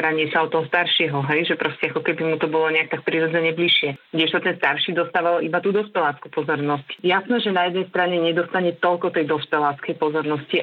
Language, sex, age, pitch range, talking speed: Slovak, female, 30-49, 155-170 Hz, 200 wpm